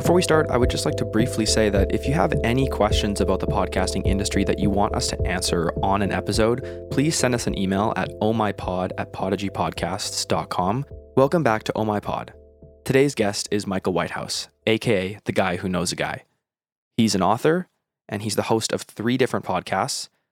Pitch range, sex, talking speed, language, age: 100-120 Hz, male, 190 wpm, English, 20-39